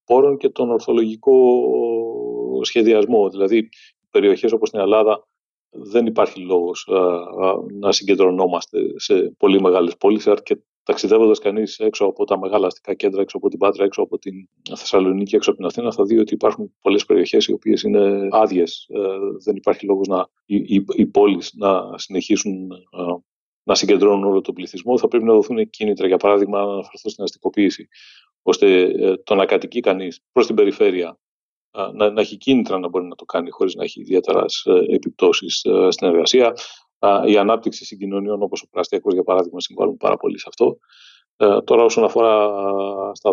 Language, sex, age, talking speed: Greek, male, 40-59, 160 wpm